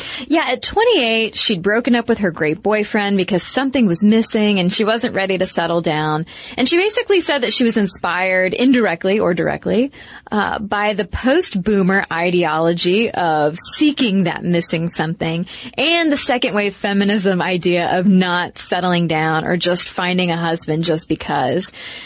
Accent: American